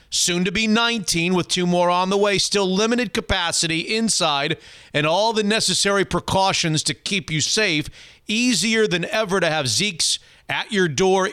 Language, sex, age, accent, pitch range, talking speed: English, male, 50-69, American, 160-205 Hz, 170 wpm